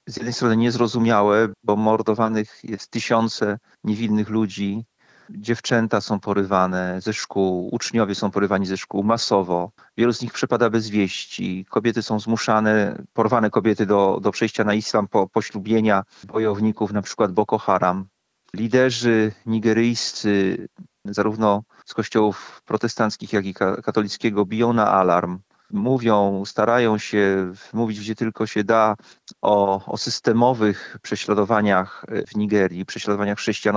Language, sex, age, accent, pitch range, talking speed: Polish, male, 40-59, native, 100-115 Hz, 130 wpm